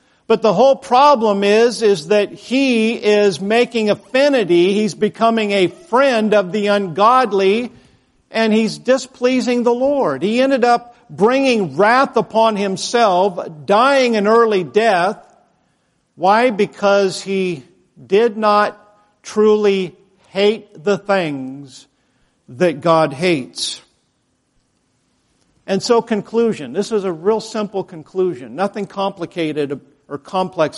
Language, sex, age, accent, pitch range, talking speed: English, male, 50-69, American, 165-220 Hz, 115 wpm